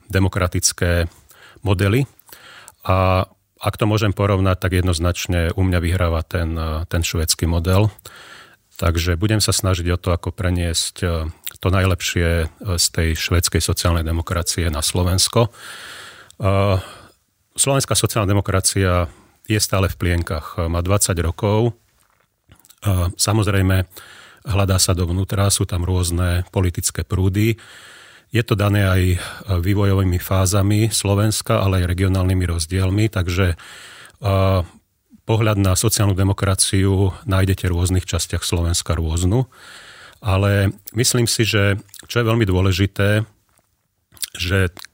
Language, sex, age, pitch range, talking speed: Slovak, male, 40-59, 90-100 Hz, 110 wpm